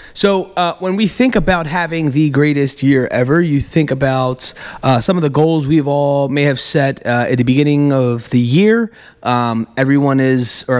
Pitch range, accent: 130-160 Hz, American